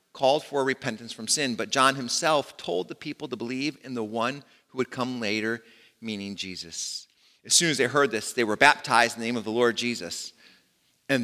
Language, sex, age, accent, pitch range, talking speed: English, male, 40-59, American, 125-170 Hz, 210 wpm